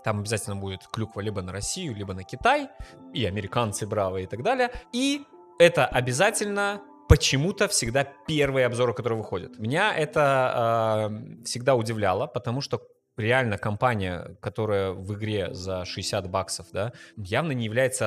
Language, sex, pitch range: Russian, male, 105-140 Hz